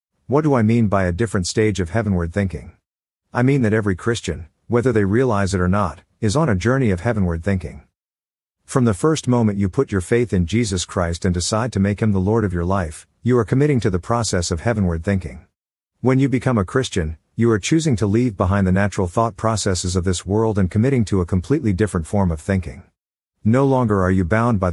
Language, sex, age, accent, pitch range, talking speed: English, male, 50-69, American, 90-120 Hz, 225 wpm